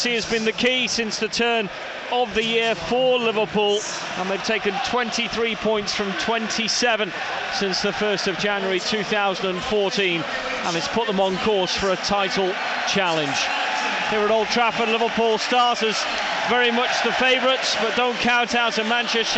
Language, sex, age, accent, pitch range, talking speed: English, male, 30-49, British, 200-245 Hz, 160 wpm